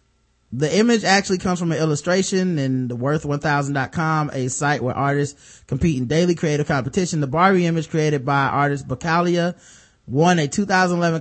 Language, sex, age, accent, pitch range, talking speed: English, male, 20-39, American, 135-170 Hz, 160 wpm